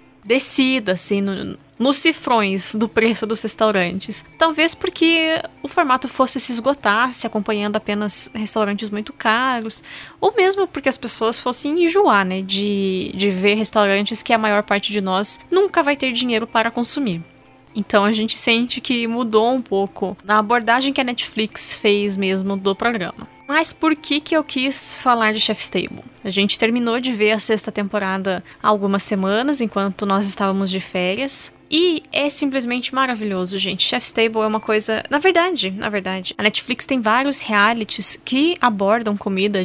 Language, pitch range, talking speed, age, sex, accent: Portuguese, 205-260 Hz, 170 wpm, 10-29, female, Brazilian